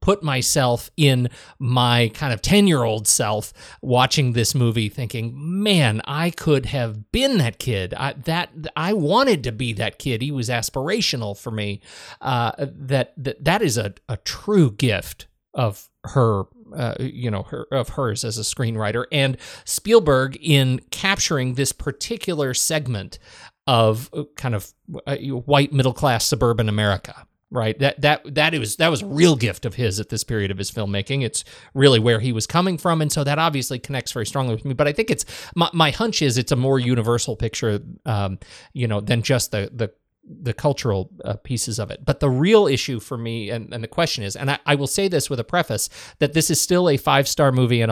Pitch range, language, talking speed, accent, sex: 115-145 Hz, English, 195 wpm, American, male